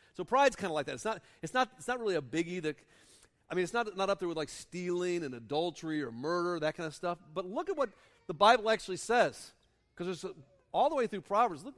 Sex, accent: male, American